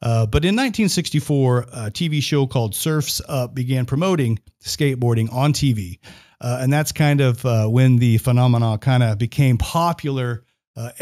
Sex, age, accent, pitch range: male, 40-59, American, 115-140 Hz